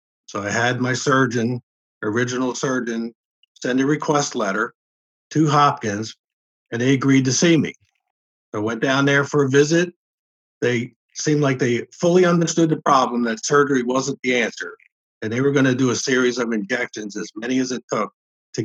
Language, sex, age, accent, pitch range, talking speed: English, male, 50-69, American, 115-145 Hz, 175 wpm